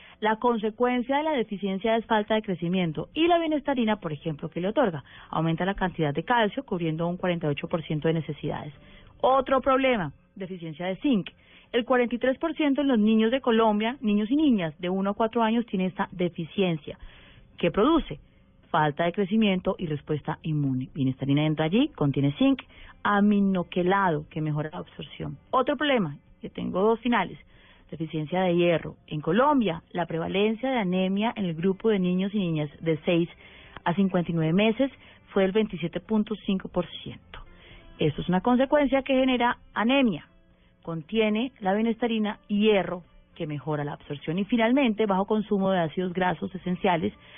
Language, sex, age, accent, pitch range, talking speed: Spanish, female, 30-49, Colombian, 165-230 Hz, 155 wpm